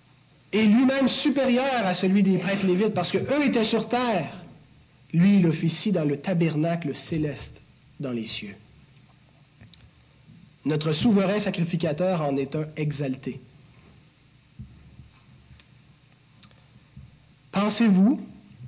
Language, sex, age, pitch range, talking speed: French, male, 40-59, 145-210 Hz, 100 wpm